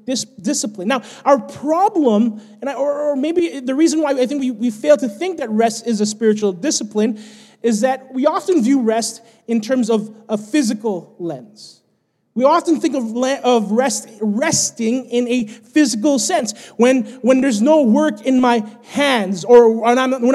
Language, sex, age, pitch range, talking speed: English, male, 20-39, 210-275 Hz, 170 wpm